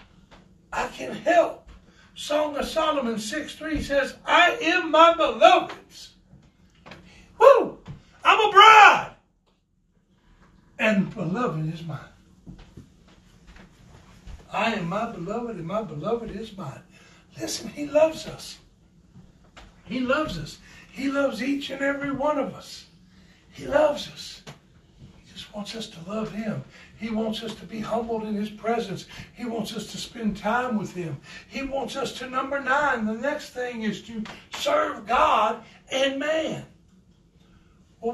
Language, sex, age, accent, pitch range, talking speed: English, male, 60-79, American, 215-295 Hz, 135 wpm